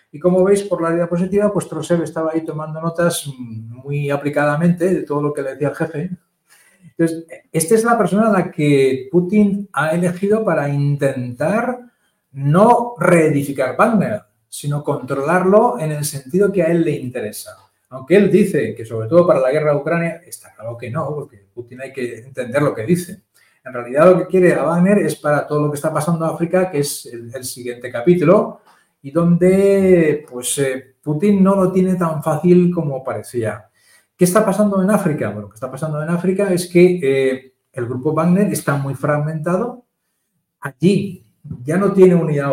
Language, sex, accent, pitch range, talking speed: Spanish, male, Spanish, 140-180 Hz, 185 wpm